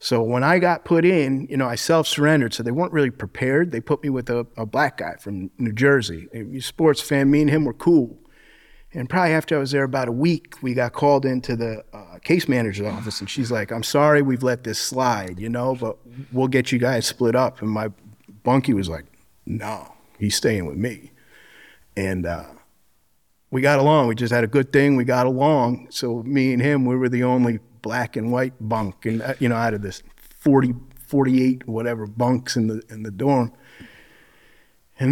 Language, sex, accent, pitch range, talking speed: English, male, American, 115-145 Hz, 210 wpm